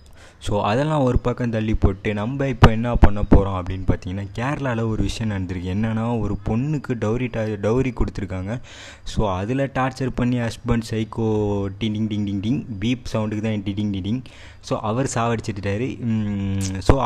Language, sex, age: Tamil, male, 20-39